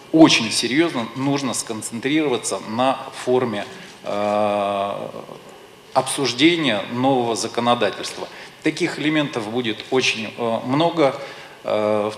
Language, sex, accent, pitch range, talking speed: Russian, male, native, 110-140 Hz, 75 wpm